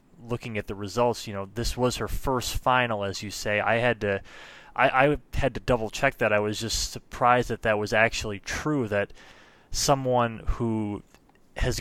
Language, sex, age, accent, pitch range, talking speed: English, male, 20-39, American, 105-125 Hz, 190 wpm